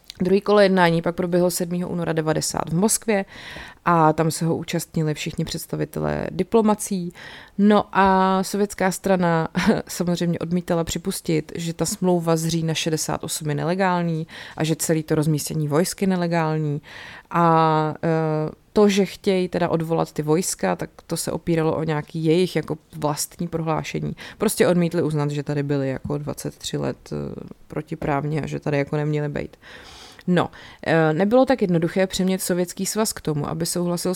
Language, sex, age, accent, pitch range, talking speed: Czech, female, 30-49, native, 155-180 Hz, 150 wpm